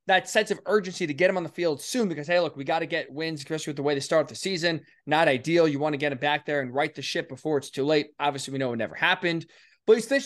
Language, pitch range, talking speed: English, 145-185 Hz, 305 wpm